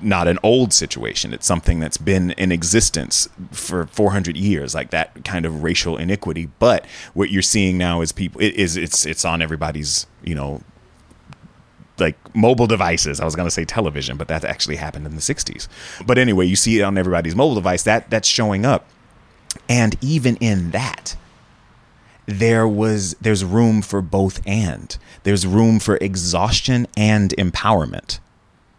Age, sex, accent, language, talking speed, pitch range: 30-49, male, American, English, 165 wpm, 90-110 Hz